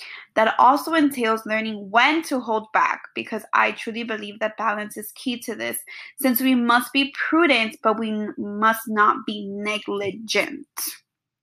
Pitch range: 220-270 Hz